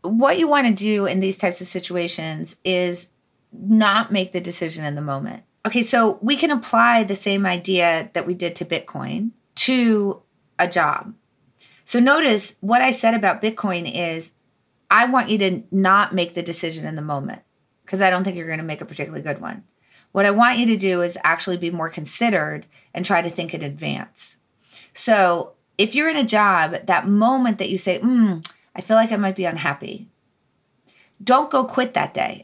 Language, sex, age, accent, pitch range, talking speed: English, female, 30-49, American, 170-220 Hz, 195 wpm